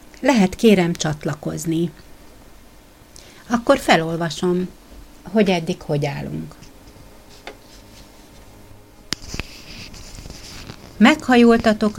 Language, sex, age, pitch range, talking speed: Hungarian, female, 60-79, 150-205 Hz, 50 wpm